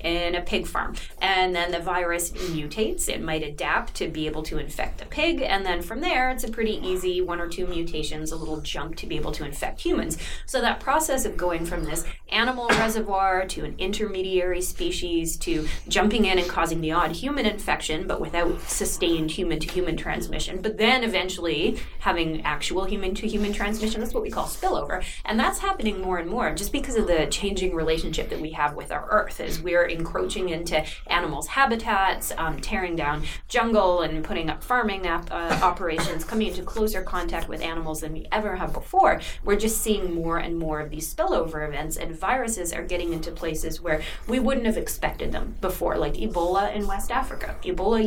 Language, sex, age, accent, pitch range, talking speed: English, female, 20-39, American, 165-210 Hz, 195 wpm